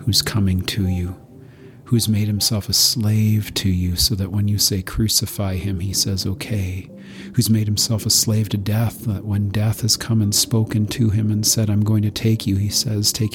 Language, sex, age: English, male, 40-59